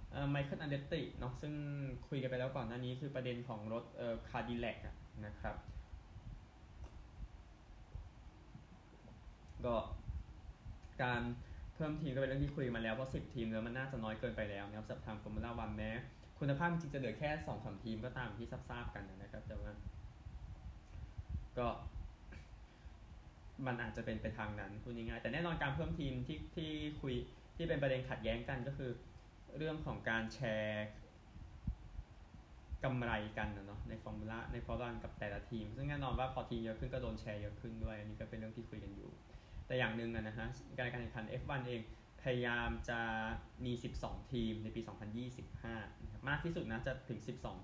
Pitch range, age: 105-130 Hz, 20-39